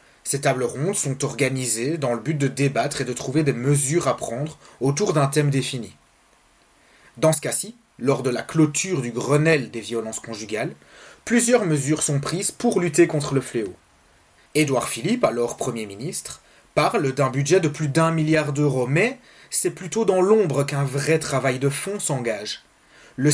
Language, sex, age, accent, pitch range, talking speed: French, male, 30-49, French, 130-160 Hz, 170 wpm